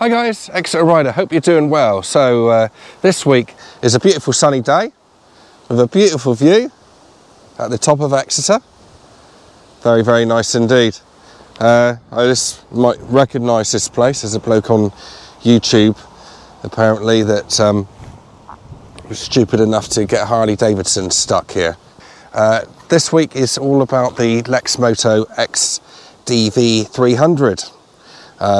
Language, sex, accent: English, male, British